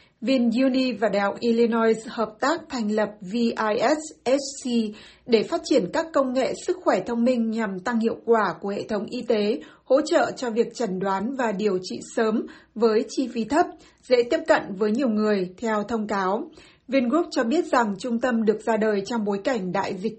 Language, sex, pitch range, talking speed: Vietnamese, female, 220-260 Hz, 195 wpm